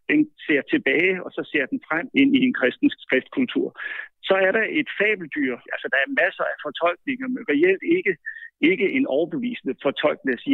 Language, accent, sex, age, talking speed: Danish, native, male, 60-79, 175 wpm